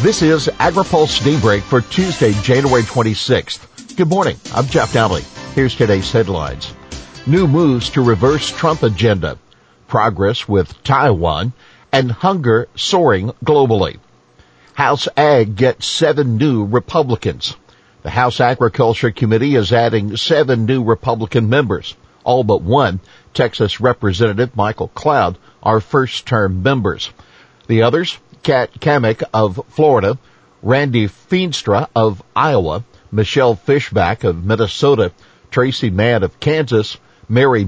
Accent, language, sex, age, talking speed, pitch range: American, English, male, 50-69, 120 wpm, 100-130 Hz